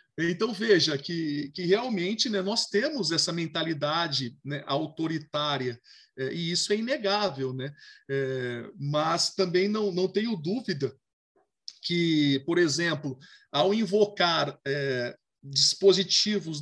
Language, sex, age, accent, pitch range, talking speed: Portuguese, male, 40-59, Brazilian, 155-200 Hz, 105 wpm